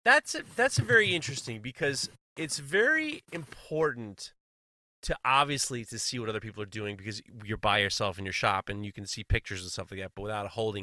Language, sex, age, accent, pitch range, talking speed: English, male, 30-49, American, 100-140 Hz, 210 wpm